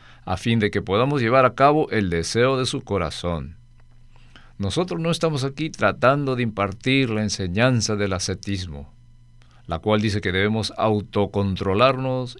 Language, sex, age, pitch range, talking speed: Spanish, male, 50-69, 95-130 Hz, 145 wpm